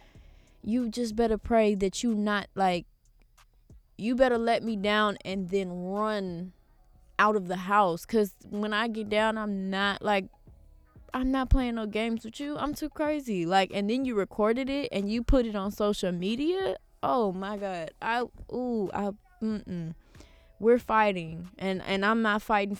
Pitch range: 195-240 Hz